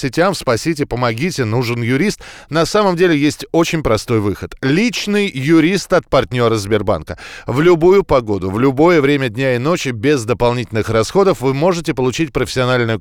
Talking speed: 150 wpm